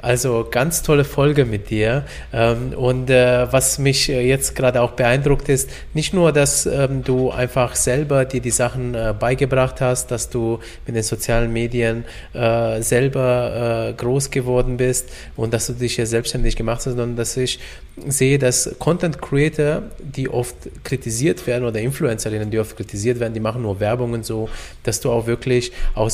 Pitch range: 115-135 Hz